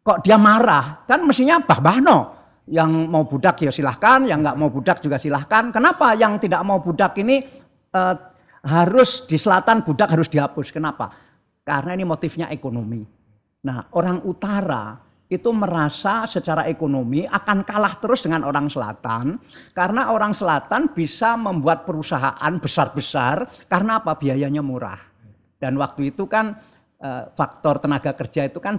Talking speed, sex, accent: 140 wpm, male, native